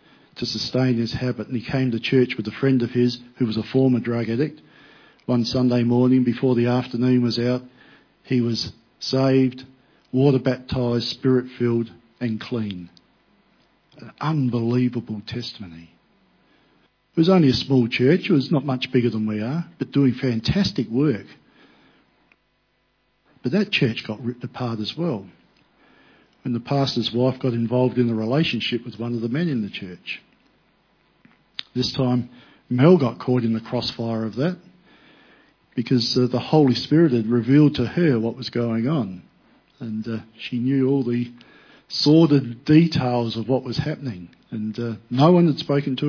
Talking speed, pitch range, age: 160 wpm, 115-135 Hz, 50-69